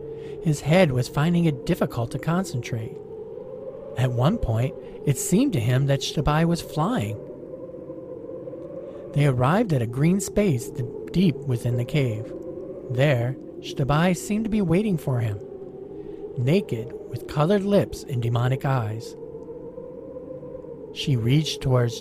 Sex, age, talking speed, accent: male, 50-69, 130 wpm, American